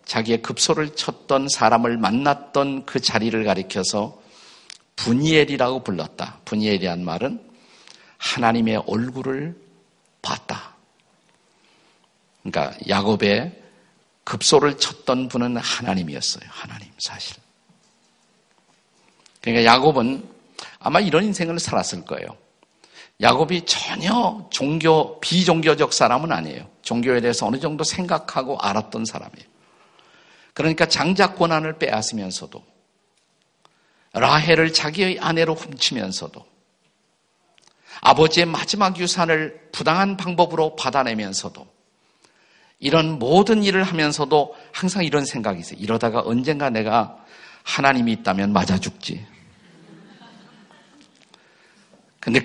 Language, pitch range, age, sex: Korean, 120-175 Hz, 50-69, male